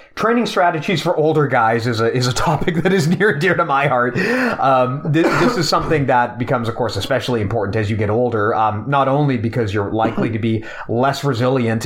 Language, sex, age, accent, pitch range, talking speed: English, male, 30-49, American, 115-145 Hz, 220 wpm